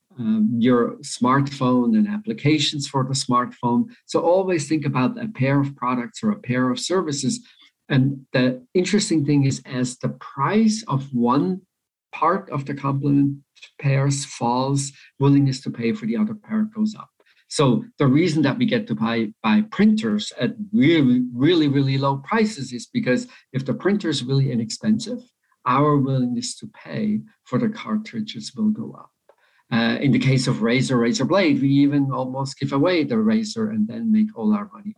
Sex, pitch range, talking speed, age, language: male, 135-215 Hz, 175 wpm, 50-69, English